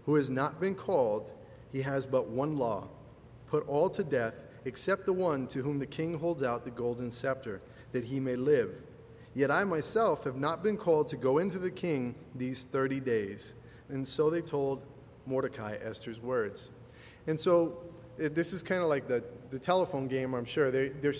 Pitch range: 130-170 Hz